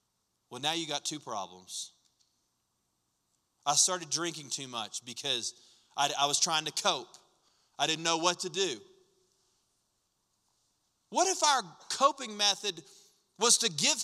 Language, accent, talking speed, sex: English, American, 135 wpm, male